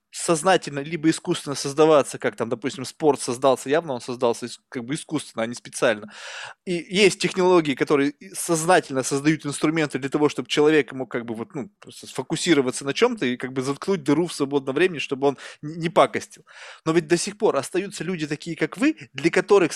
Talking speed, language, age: 185 wpm, Russian, 20-39